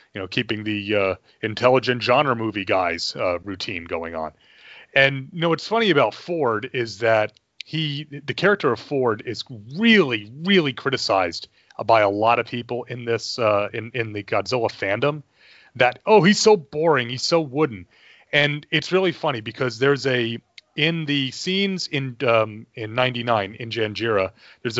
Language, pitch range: English, 115-155 Hz